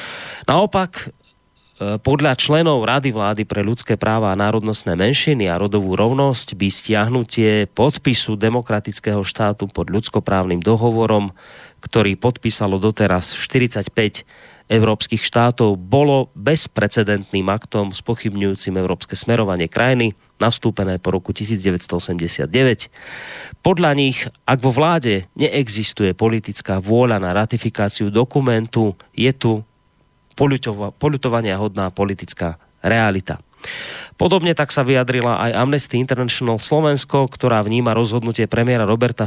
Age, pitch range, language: 30-49, 100-125 Hz, Slovak